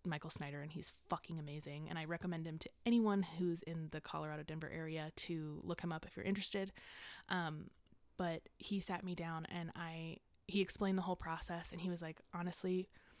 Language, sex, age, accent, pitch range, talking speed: English, female, 20-39, American, 160-180 Hz, 195 wpm